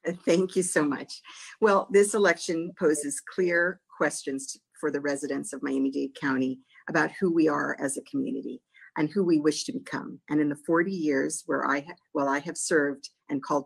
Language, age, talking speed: English, 50-69, 190 wpm